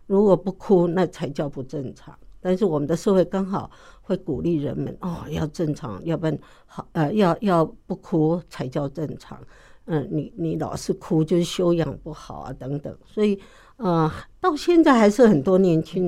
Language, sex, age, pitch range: Chinese, female, 60-79, 155-205 Hz